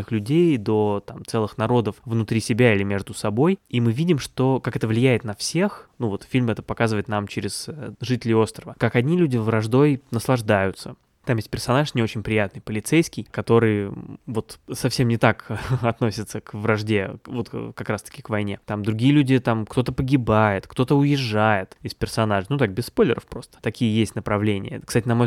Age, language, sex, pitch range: 20-39, Russian, male, 105-125 Hz